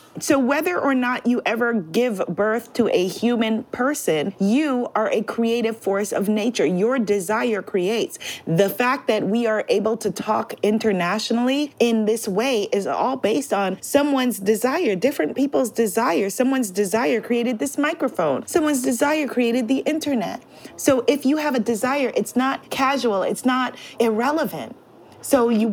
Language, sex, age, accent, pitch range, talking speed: English, female, 30-49, American, 210-260 Hz, 155 wpm